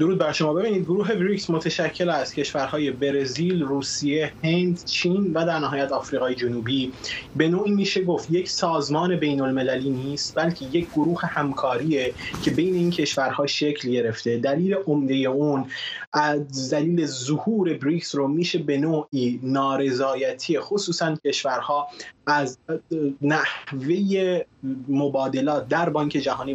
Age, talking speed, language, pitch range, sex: 20-39, 130 wpm, Persian, 135-175 Hz, male